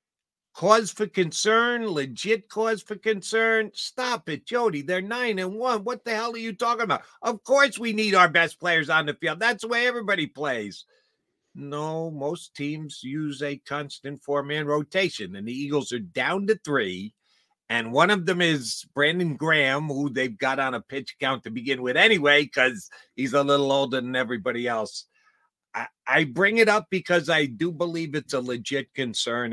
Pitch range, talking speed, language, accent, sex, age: 130-195 Hz, 185 wpm, English, American, male, 50-69